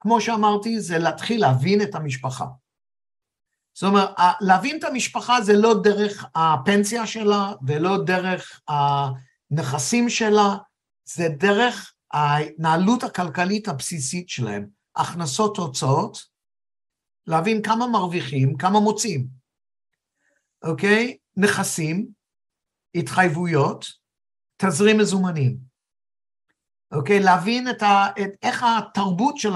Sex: male